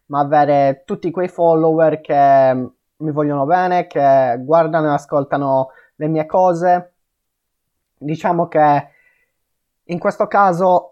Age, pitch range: 20-39, 145-180 Hz